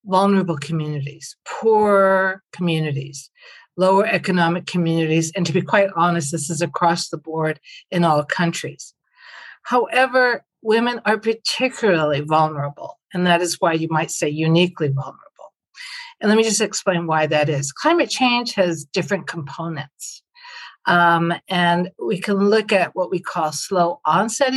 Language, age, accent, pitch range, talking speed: English, 50-69, American, 165-215 Hz, 140 wpm